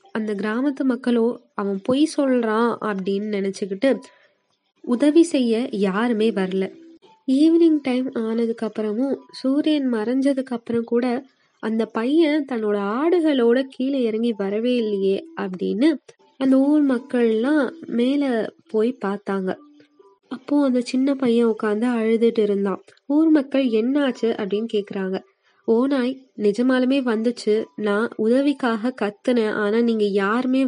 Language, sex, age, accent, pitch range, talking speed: Tamil, female, 20-39, native, 210-260 Hz, 110 wpm